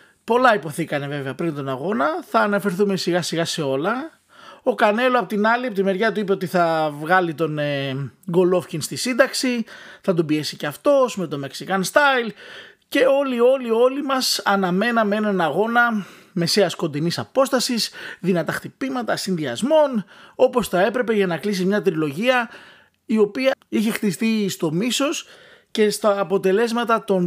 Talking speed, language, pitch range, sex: 155 wpm, Greek, 175-240 Hz, male